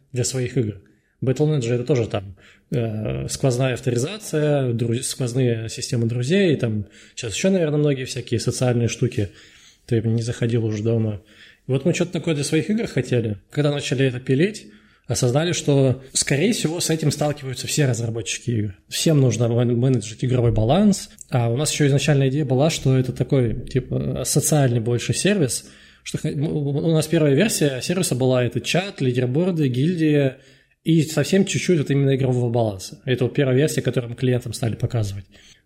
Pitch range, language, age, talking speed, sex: 120-150 Hz, Russian, 20-39, 165 wpm, male